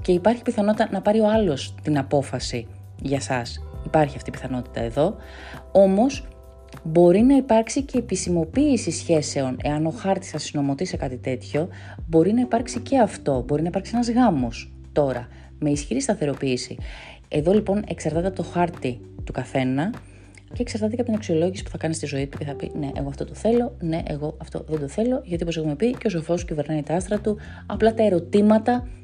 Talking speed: 190 wpm